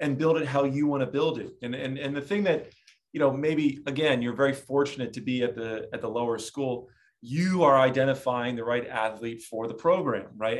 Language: English